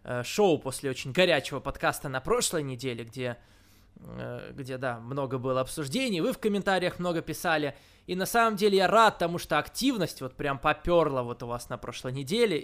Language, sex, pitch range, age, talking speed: Russian, male, 135-185 Hz, 20-39, 175 wpm